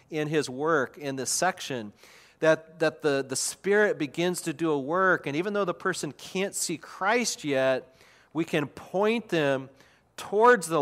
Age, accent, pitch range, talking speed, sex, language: 40-59, American, 150-205 Hz, 170 wpm, male, English